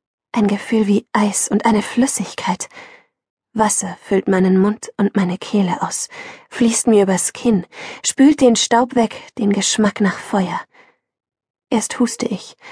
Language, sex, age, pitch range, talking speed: German, female, 20-39, 210-250 Hz, 140 wpm